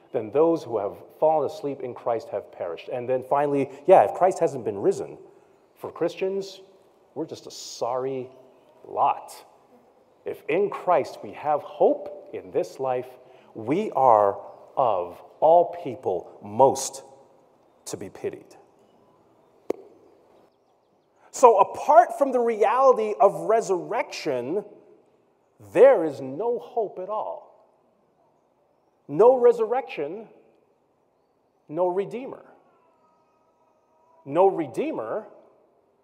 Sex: male